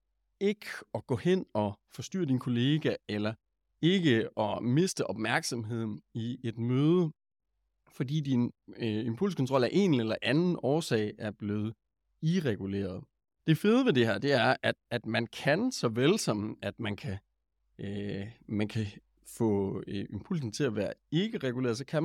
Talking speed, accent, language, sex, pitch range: 160 wpm, native, Danish, male, 105-150 Hz